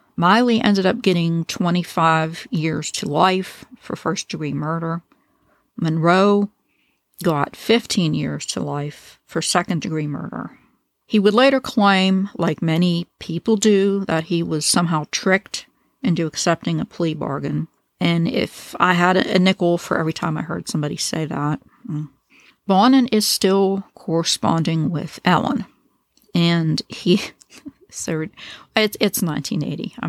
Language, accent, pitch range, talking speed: English, American, 160-200 Hz, 130 wpm